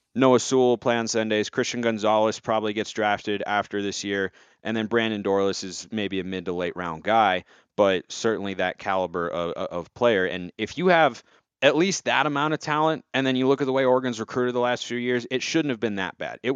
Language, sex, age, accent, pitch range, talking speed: English, male, 30-49, American, 100-125 Hz, 230 wpm